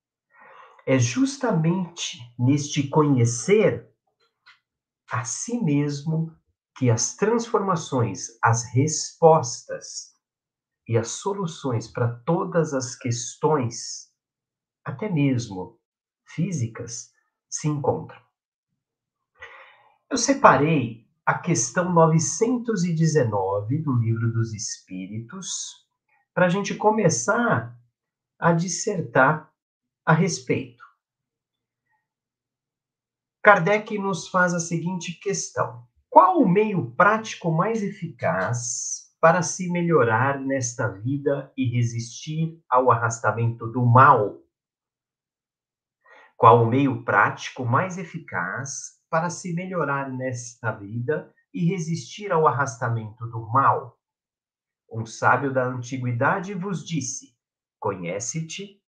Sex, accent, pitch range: male, Brazilian, 120-175 Hz